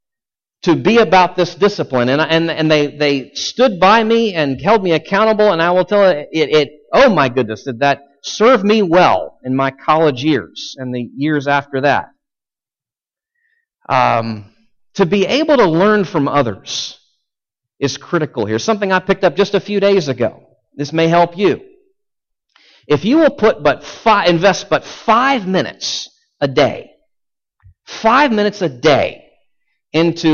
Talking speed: 160 wpm